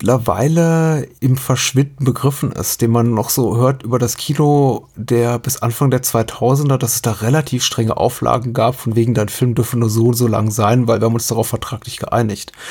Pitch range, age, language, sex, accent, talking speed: 115-125 Hz, 30-49, German, male, German, 205 wpm